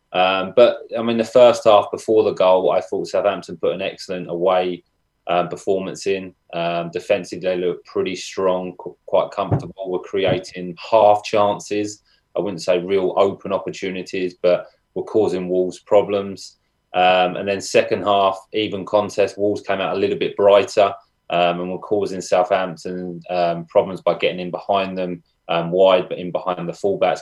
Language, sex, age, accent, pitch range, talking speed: English, male, 20-39, British, 90-100 Hz, 170 wpm